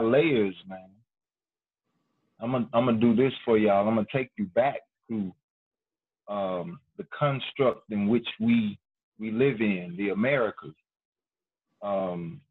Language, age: English, 30-49